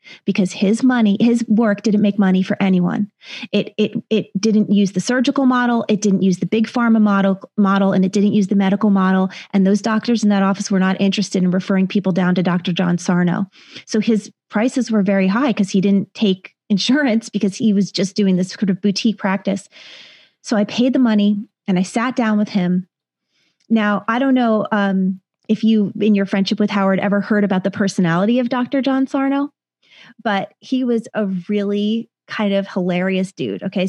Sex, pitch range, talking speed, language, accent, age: female, 195-235 Hz, 200 wpm, English, American, 30-49